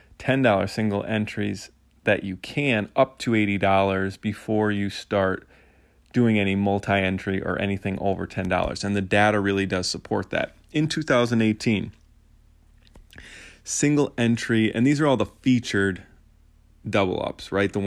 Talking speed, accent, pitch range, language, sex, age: 130 wpm, American, 95-105 Hz, English, male, 20-39